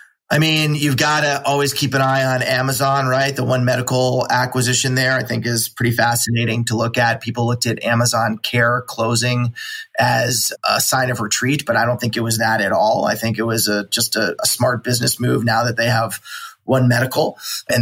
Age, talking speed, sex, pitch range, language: 20-39, 210 wpm, male, 120-135 Hz, English